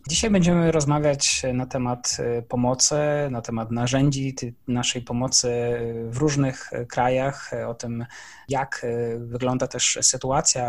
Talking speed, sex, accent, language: 120 wpm, male, native, Polish